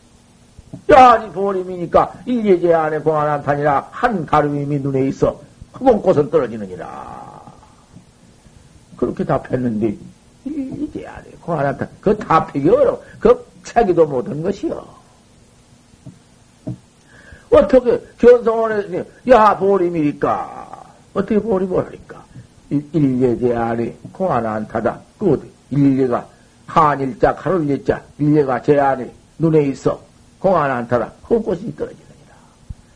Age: 60-79